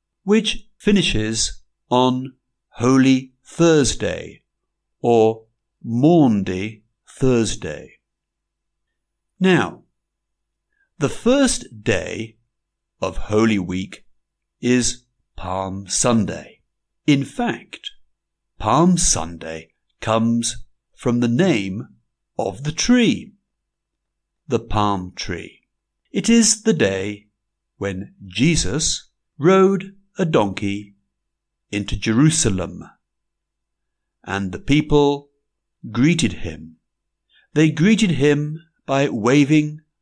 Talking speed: 80 wpm